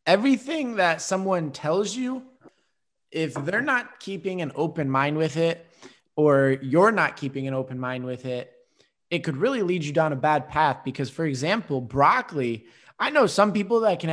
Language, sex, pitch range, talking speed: English, male, 130-175 Hz, 180 wpm